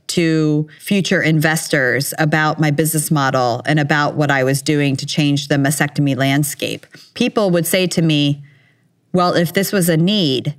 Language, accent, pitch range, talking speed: English, American, 150-180 Hz, 165 wpm